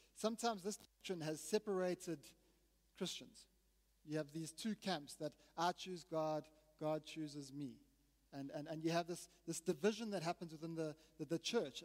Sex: male